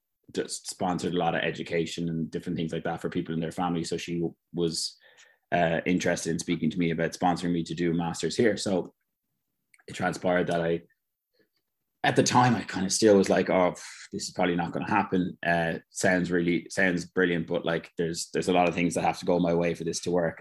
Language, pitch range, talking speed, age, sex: English, 85-95 Hz, 225 wpm, 20-39, male